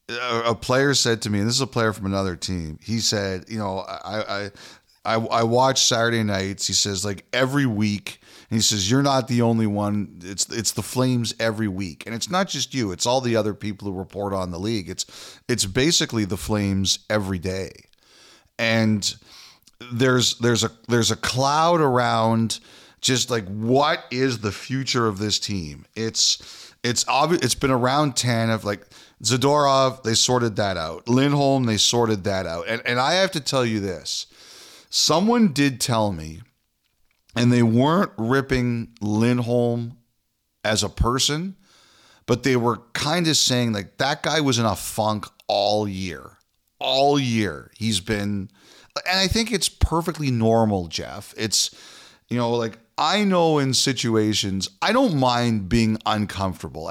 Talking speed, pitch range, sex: 170 wpm, 100-130 Hz, male